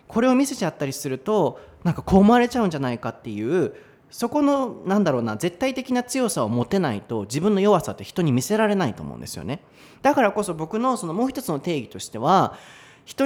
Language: Japanese